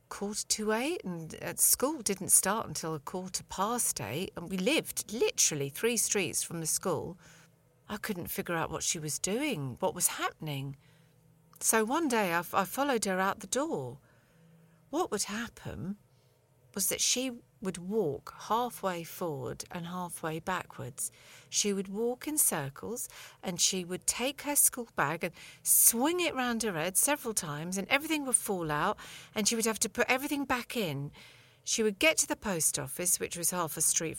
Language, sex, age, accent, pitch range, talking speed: English, female, 50-69, British, 160-230 Hz, 175 wpm